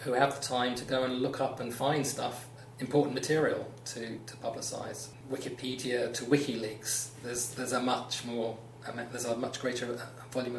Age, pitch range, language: 30-49, 120-135 Hz, English